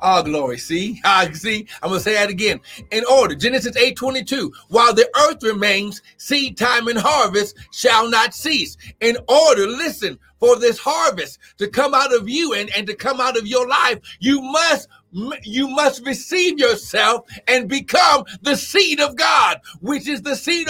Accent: American